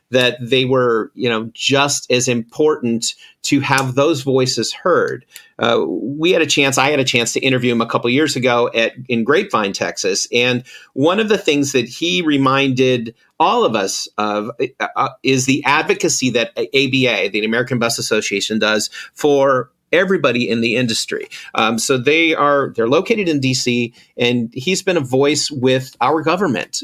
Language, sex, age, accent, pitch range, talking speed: English, male, 40-59, American, 115-140 Hz, 170 wpm